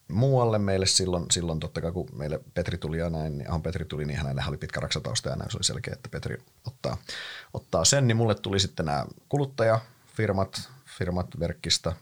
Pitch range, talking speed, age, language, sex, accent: 80-110 Hz, 200 wpm, 30-49, Finnish, male, native